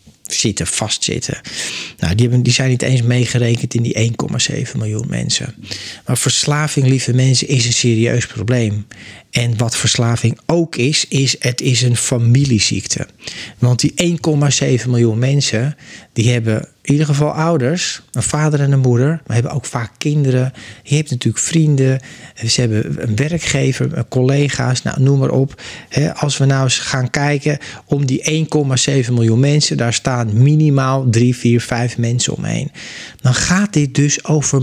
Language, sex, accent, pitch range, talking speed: Dutch, male, Dutch, 120-145 Hz, 155 wpm